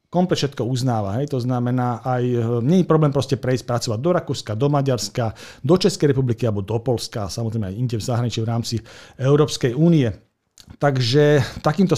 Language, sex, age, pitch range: Slovak, male, 40-59, 115-145 Hz